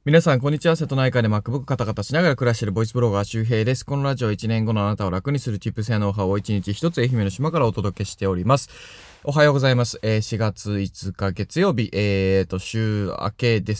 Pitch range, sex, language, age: 100-130 Hz, male, Japanese, 20-39